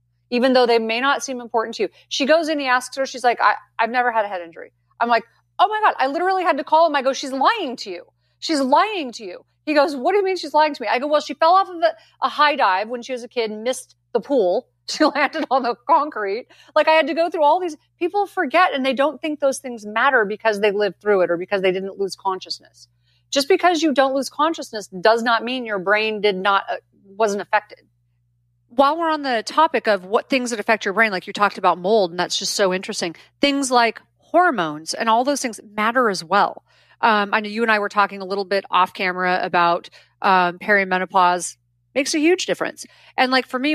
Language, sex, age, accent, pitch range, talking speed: English, female, 30-49, American, 195-275 Hz, 245 wpm